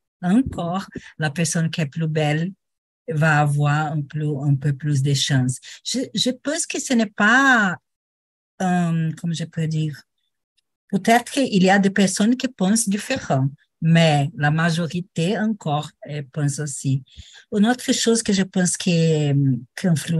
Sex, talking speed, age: female, 150 wpm, 50-69